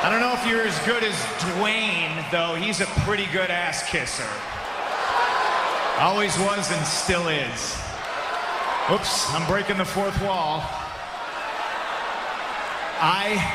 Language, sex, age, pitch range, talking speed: Czech, male, 30-49, 200-255 Hz, 120 wpm